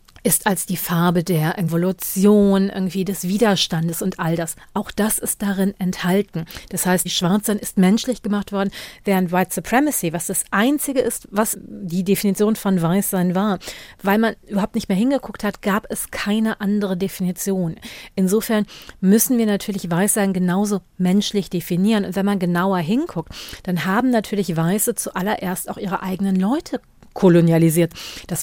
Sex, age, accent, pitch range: female, 40-59, German, 180-210 Hz